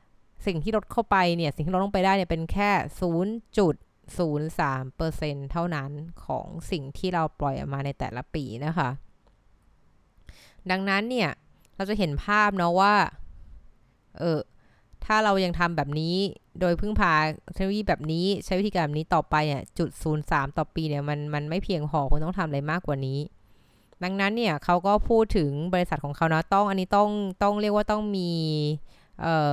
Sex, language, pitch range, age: female, Thai, 150-190 Hz, 20-39